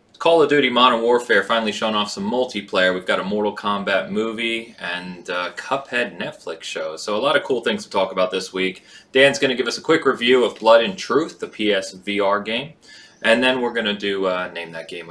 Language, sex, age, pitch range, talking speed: English, male, 20-39, 95-120 Hz, 225 wpm